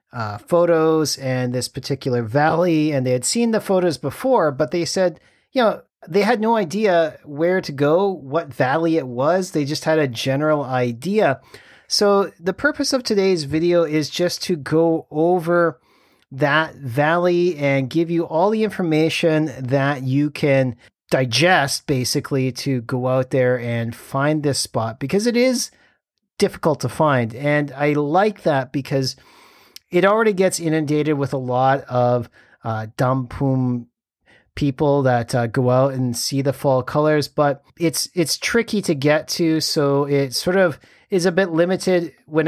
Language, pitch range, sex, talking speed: English, 130-170 Hz, male, 160 wpm